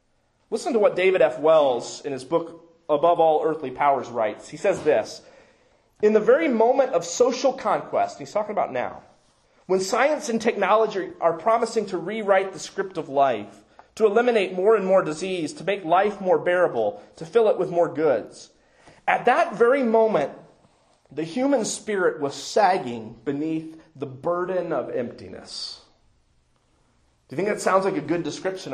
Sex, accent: male, American